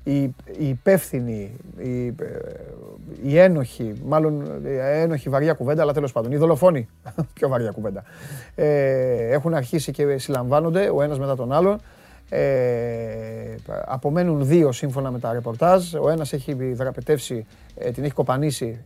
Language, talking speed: Greek, 120 wpm